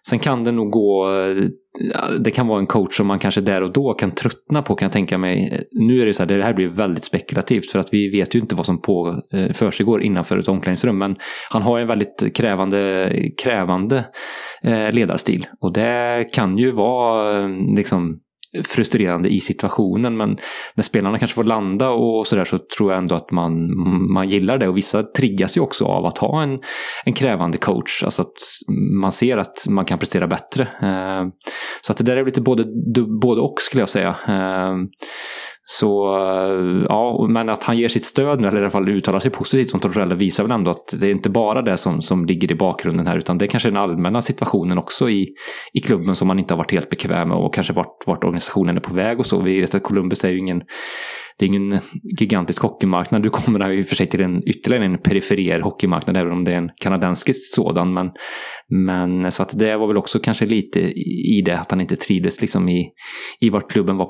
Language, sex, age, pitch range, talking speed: English, male, 20-39, 95-115 Hz, 215 wpm